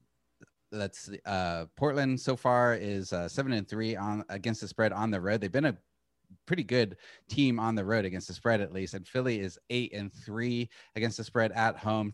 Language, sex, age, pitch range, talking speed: English, male, 30-49, 95-125 Hz, 210 wpm